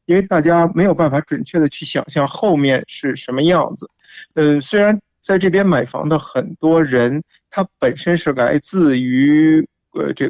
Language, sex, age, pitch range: Chinese, male, 50-69, 145-180 Hz